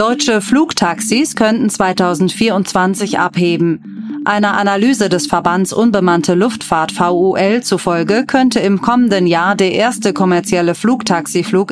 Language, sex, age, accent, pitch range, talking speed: German, female, 30-49, German, 180-220 Hz, 110 wpm